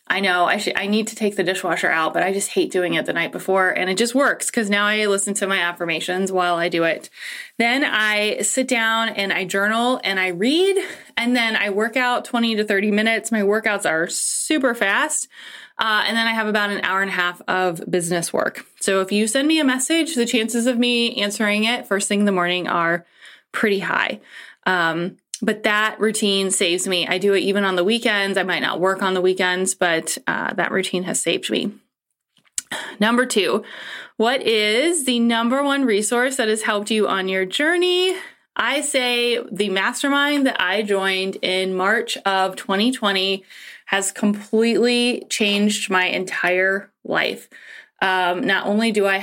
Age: 20-39